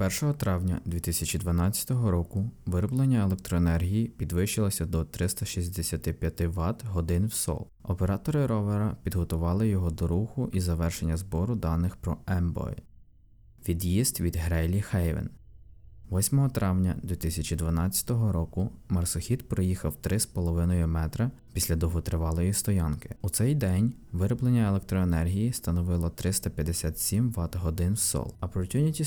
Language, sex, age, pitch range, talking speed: Ukrainian, male, 20-39, 85-110 Hz, 105 wpm